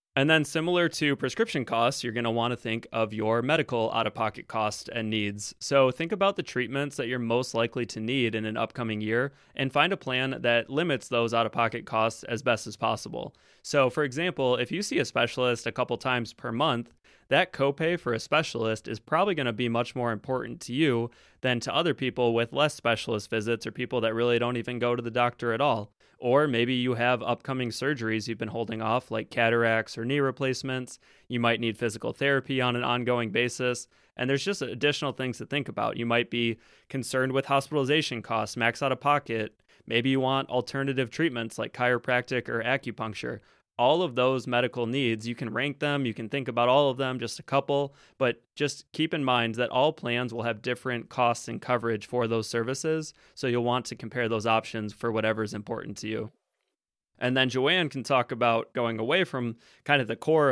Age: 20-39